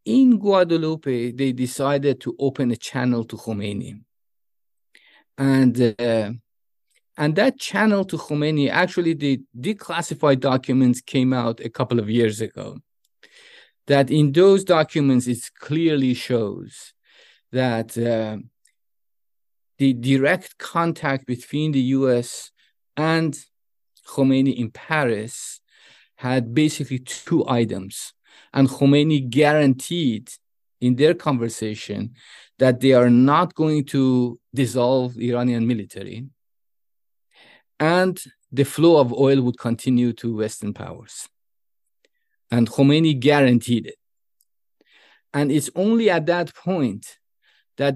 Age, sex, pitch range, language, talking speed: 50-69, male, 120-155 Hz, English, 110 wpm